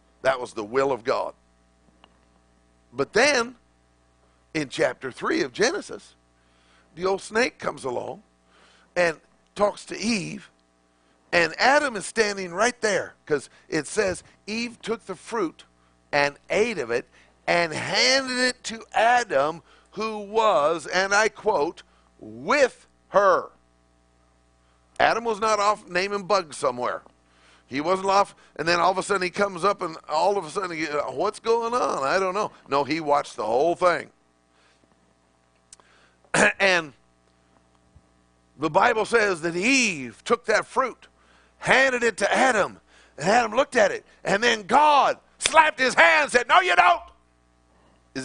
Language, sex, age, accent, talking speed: English, male, 50-69, American, 145 wpm